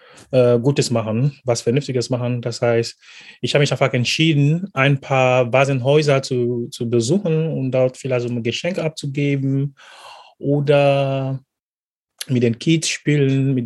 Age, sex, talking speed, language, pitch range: 30-49, male, 130 wpm, German, 120-150 Hz